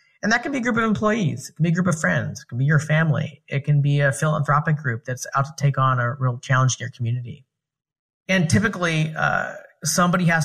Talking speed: 240 wpm